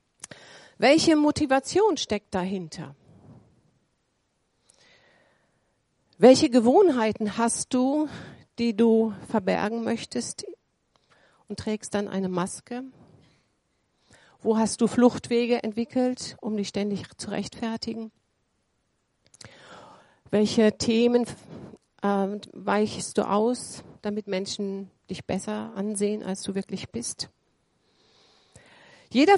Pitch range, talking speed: 195-245 Hz, 85 wpm